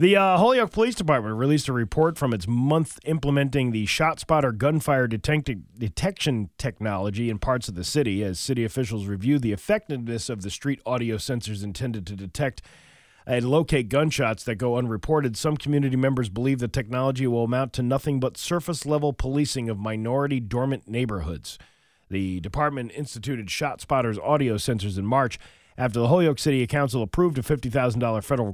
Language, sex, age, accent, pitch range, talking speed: English, male, 40-59, American, 110-140 Hz, 160 wpm